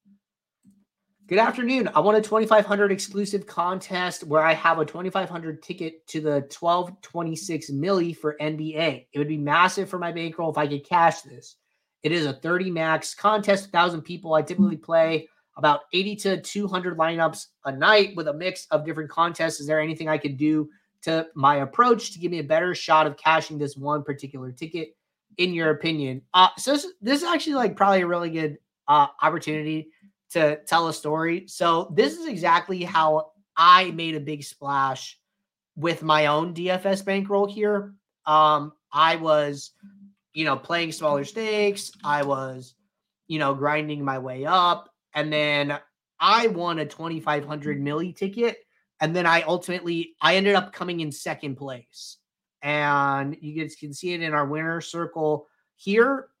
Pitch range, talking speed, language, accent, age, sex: 150-195 Hz, 170 wpm, English, American, 30-49, male